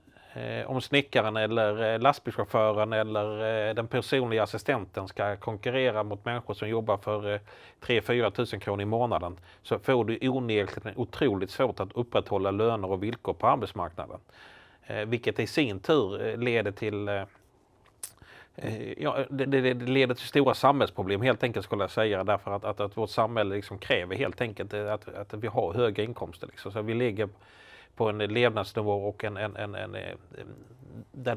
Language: Swedish